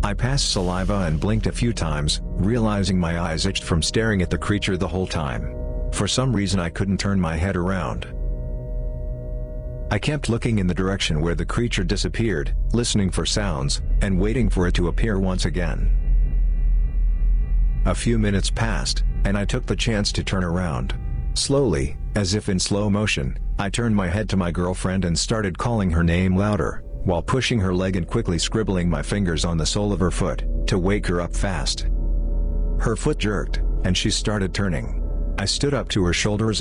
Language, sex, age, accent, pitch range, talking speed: Danish, male, 50-69, American, 80-105 Hz, 185 wpm